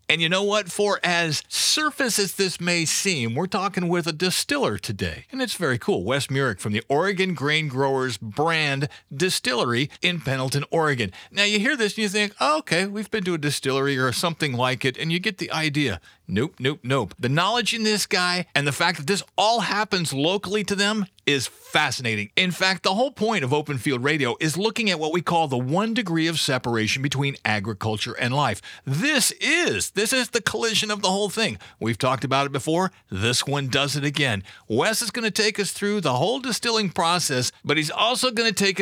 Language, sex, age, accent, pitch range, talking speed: English, male, 40-59, American, 135-200 Hz, 210 wpm